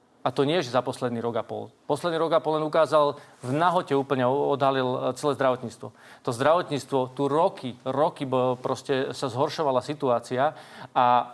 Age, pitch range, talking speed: 40-59, 130-155 Hz, 165 wpm